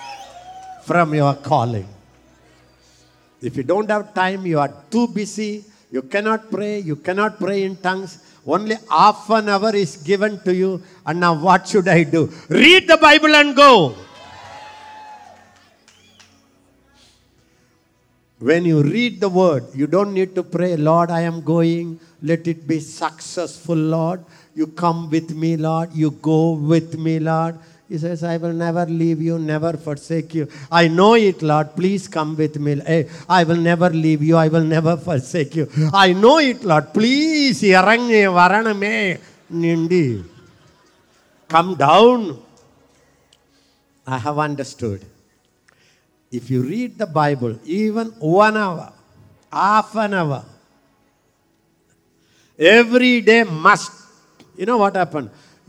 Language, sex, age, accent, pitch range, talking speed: English, male, 50-69, Indian, 155-200 Hz, 135 wpm